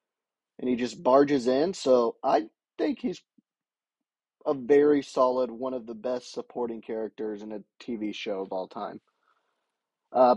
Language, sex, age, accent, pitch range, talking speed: English, male, 20-39, American, 115-130 Hz, 150 wpm